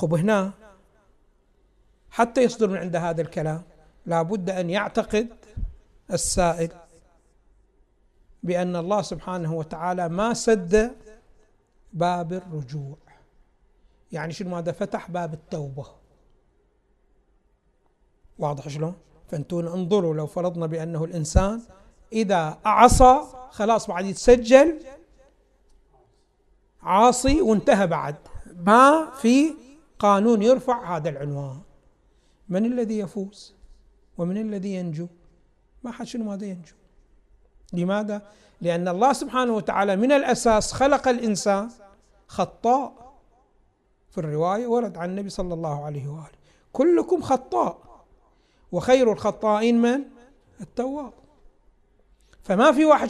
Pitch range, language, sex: 175-240 Hz, Arabic, male